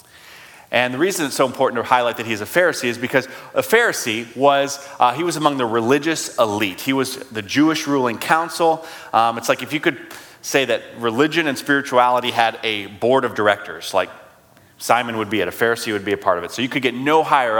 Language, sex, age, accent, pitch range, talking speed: English, male, 30-49, American, 100-135 Hz, 220 wpm